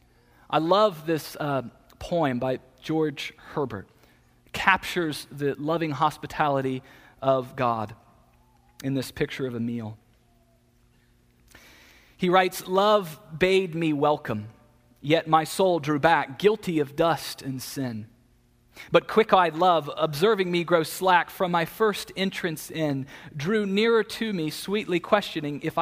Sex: male